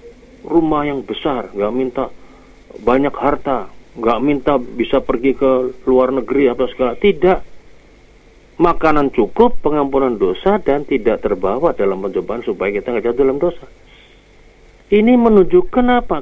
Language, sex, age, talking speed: Indonesian, male, 40-59, 130 wpm